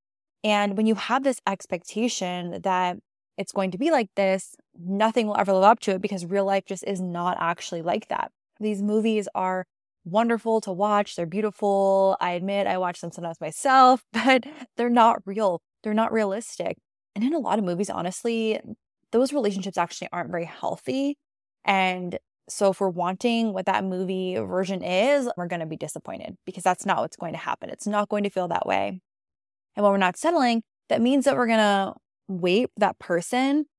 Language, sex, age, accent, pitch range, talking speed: English, female, 20-39, American, 180-220 Hz, 190 wpm